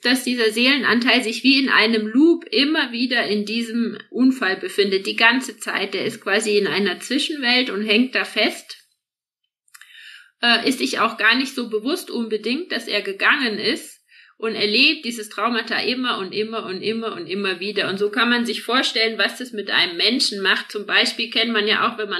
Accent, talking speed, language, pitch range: German, 195 wpm, German, 205-240 Hz